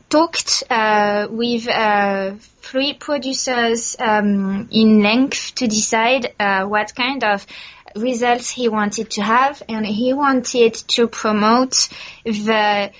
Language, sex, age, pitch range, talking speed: English, female, 20-39, 210-245 Hz, 120 wpm